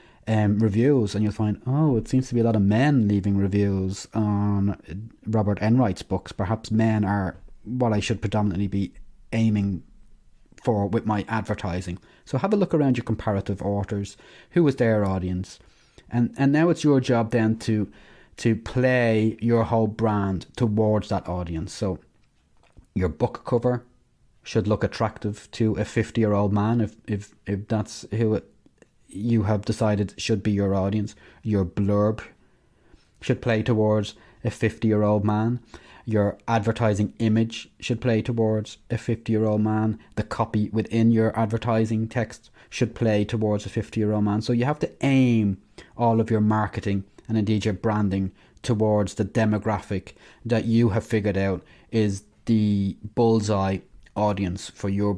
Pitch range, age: 100-115 Hz, 30-49